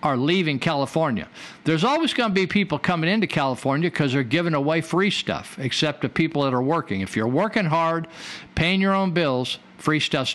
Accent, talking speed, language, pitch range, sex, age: American, 195 wpm, English, 140-180 Hz, male, 50-69